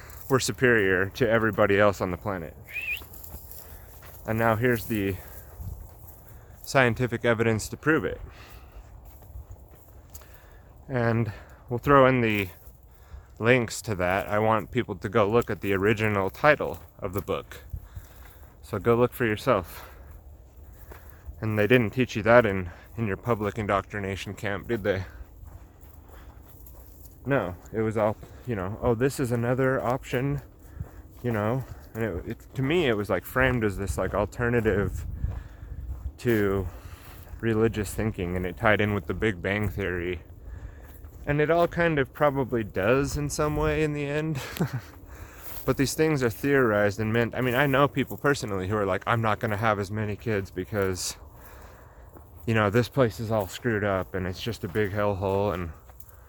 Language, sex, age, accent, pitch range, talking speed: English, male, 30-49, American, 90-120 Hz, 160 wpm